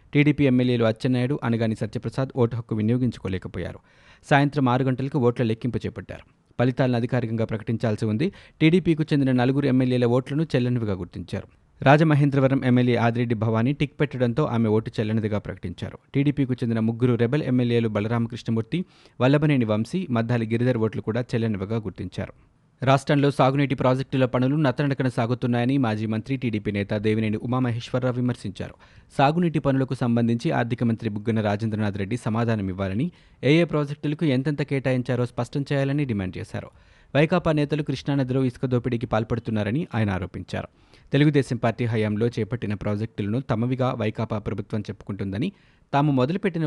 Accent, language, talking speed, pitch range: native, Telugu, 125 wpm, 110-140 Hz